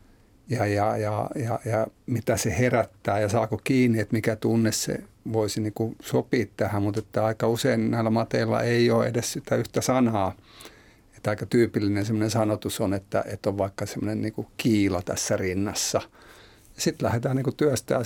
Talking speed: 165 wpm